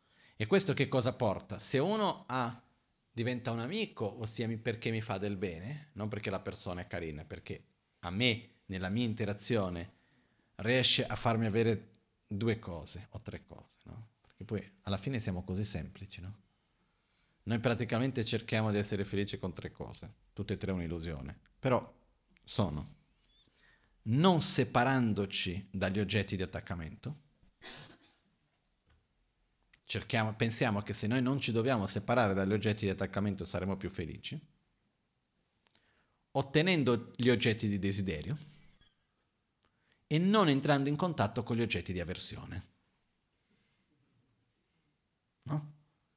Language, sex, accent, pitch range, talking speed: Italian, male, native, 100-140 Hz, 130 wpm